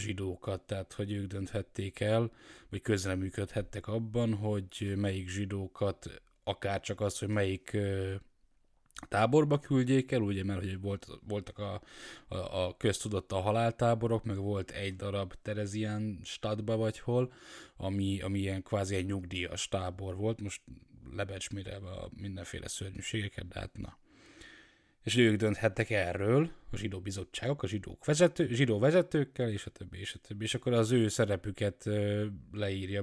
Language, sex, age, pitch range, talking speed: Hungarian, male, 10-29, 95-110 Hz, 135 wpm